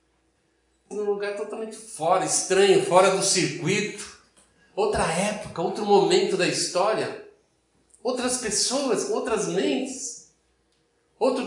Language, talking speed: Portuguese, 100 wpm